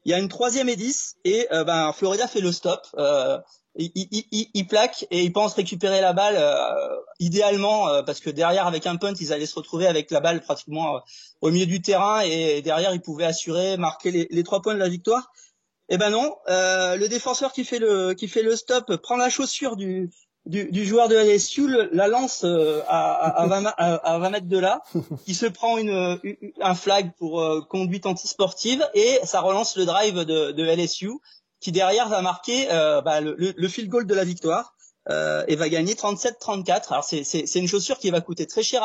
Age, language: 30-49, French